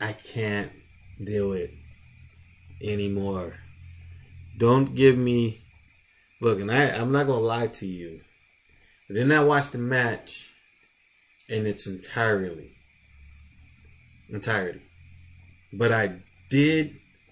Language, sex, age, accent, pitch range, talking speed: English, male, 20-39, American, 95-130 Hz, 110 wpm